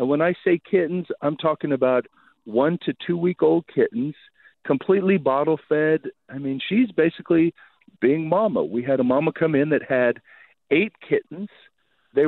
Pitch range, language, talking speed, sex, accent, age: 130-180 Hz, English, 150 wpm, male, American, 40-59